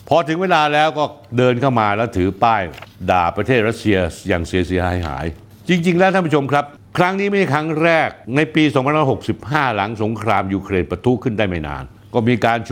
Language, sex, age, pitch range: Thai, male, 60-79, 100-140 Hz